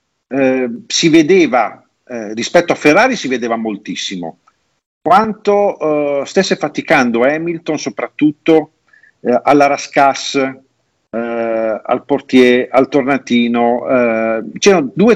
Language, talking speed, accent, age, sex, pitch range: Italian, 105 wpm, native, 50-69, male, 125-180 Hz